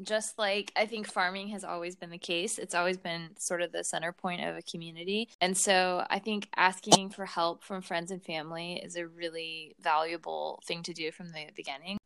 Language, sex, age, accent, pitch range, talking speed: English, female, 20-39, American, 160-185 Hz, 210 wpm